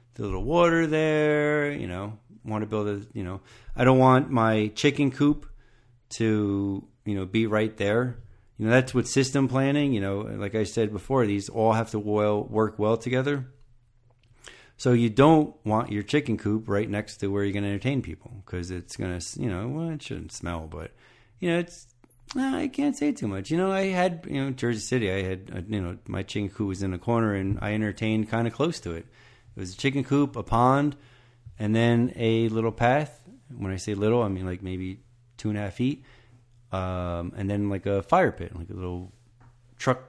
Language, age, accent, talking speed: English, 40-59, American, 215 wpm